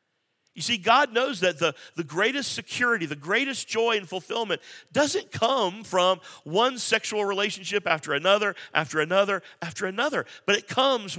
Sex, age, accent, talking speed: male, 50-69, American, 155 wpm